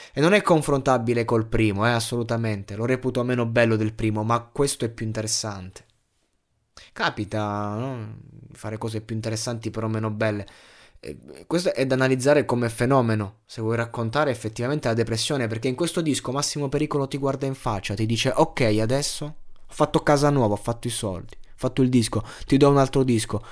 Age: 20-39